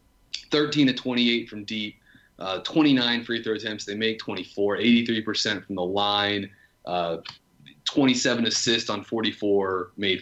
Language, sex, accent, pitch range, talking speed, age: English, male, American, 105-130 Hz, 135 wpm, 30-49